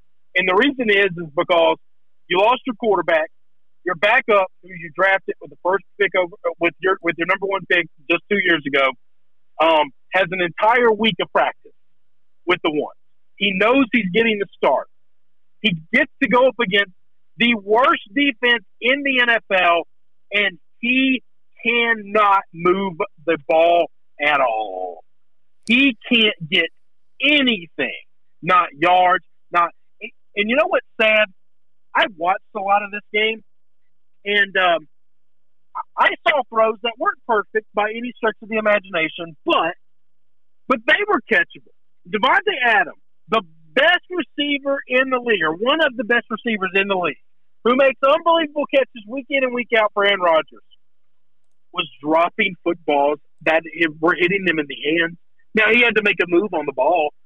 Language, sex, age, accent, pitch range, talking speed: English, male, 50-69, American, 175-255 Hz, 160 wpm